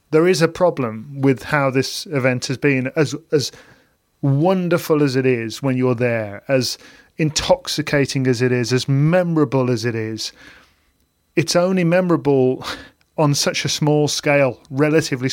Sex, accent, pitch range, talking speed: male, British, 130-150 Hz, 150 wpm